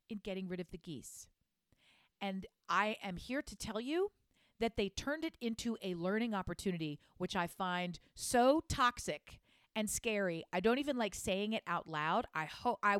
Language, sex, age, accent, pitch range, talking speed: English, female, 40-59, American, 170-235 Hz, 180 wpm